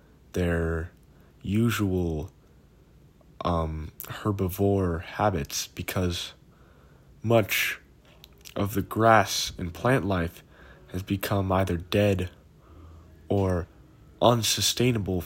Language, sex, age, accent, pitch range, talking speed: English, male, 20-39, American, 85-110 Hz, 75 wpm